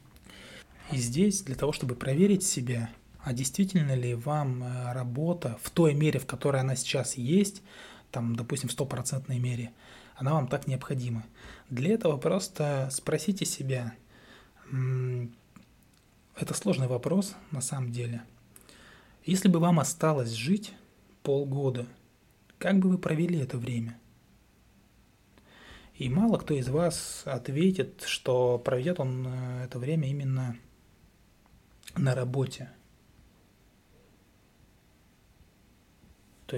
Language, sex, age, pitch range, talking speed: Russian, male, 20-39, 120-155 Hz, 110 wpm